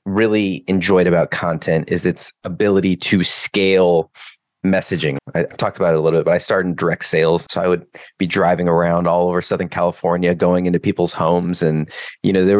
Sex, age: male, 30-49